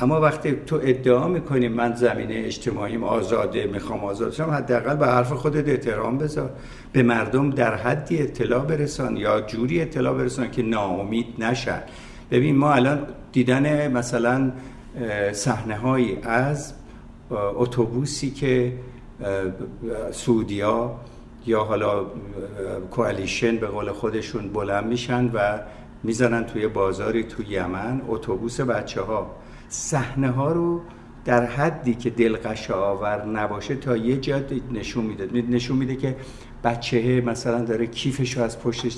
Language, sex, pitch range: Persian, male, 115-135 Hz